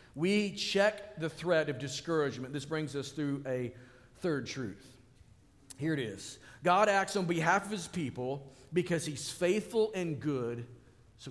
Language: English